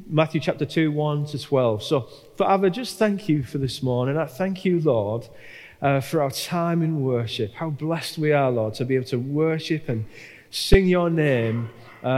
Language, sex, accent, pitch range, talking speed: English, male, British, 125-165 Hz, 185 wpm